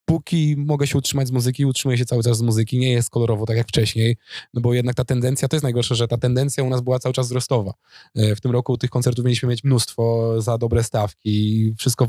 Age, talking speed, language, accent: 20-39, 235 wpm, Polish, native